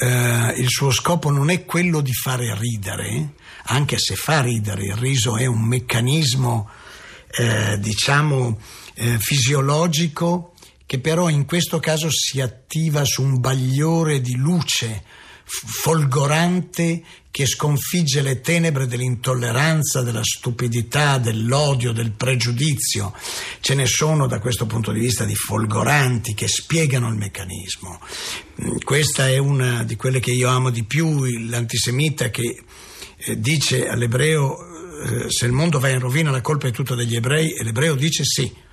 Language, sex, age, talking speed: Italian, male, 50-69, 140 wpm